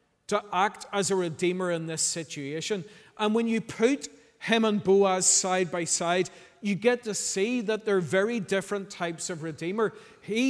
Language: English